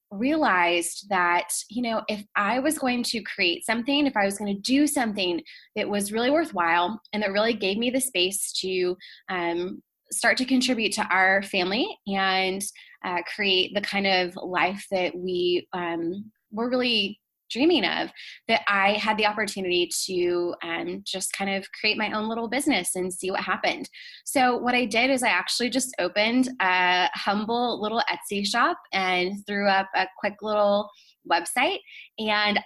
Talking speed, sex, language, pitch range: 165 wpm, female, English, 185-230 Hz